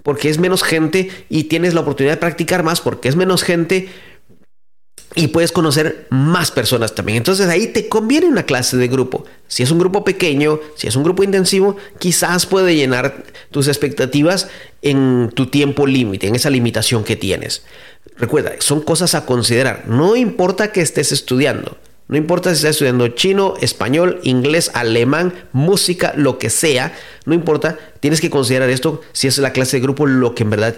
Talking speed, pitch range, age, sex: 180 wpm, 120-165 Hz, 40-59, male